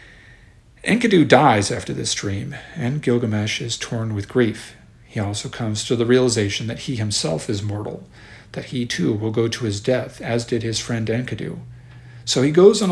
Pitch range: 115-145 Hz